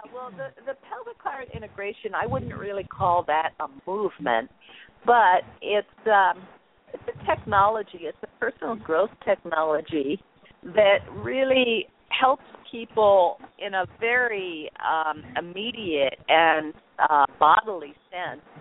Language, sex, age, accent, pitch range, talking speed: English, female, 50-69, American, 160-220 Hz, 115 wpm